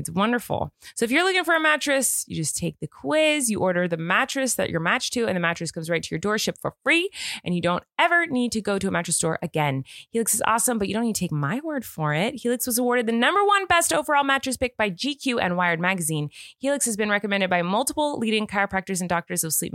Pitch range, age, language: 175-255 Hz, 20-39, English